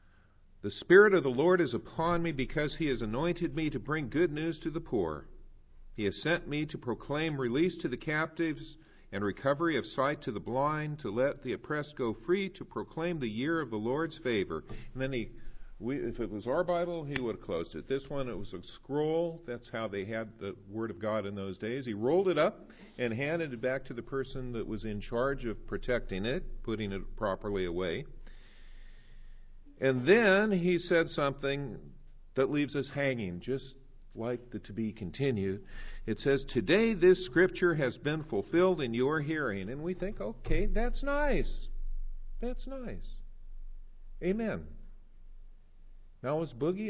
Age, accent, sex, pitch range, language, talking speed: 50-69, American, male, 115-170 Hz, English, 180 wpm